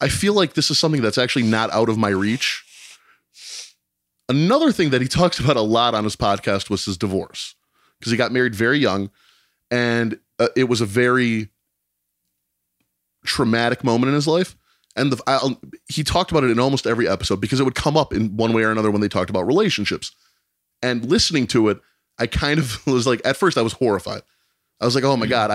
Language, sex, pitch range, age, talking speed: English, male, 105-130 Hz, 20-39, 205 wpm